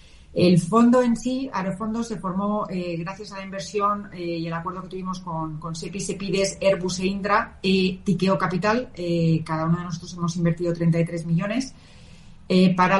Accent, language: Spanish, Spanish